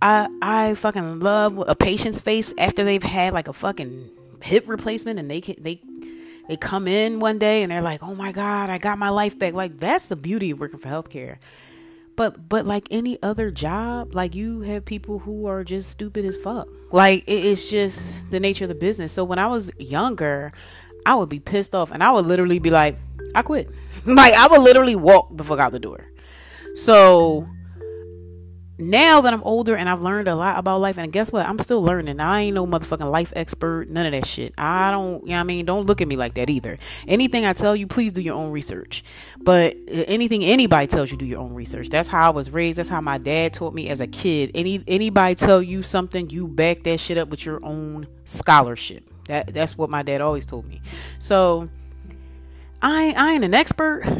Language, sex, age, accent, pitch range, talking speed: English, female, 30-49, American, 150-210 Hz, 215 wpm